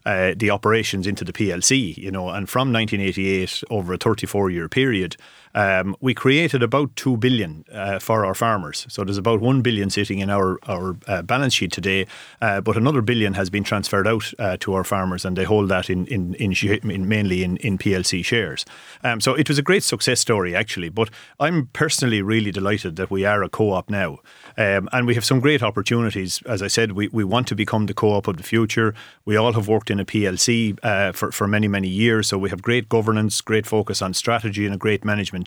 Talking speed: 220 wpm